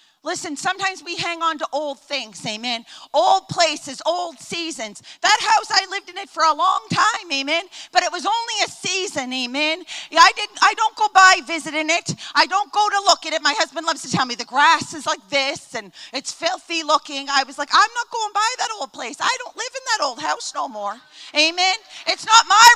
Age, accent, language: 40-59, American, English